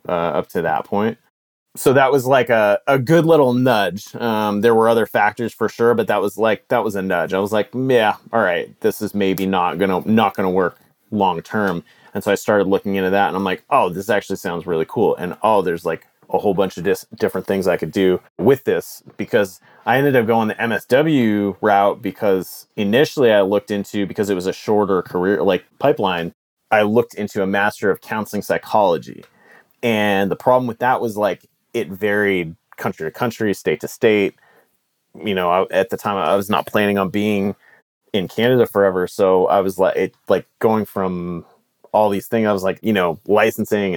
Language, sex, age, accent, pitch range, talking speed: English, male, 30-49, American, 95-110 Hz, 205 wpm